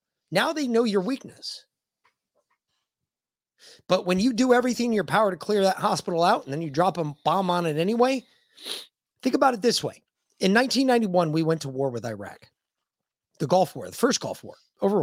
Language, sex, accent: English, male, American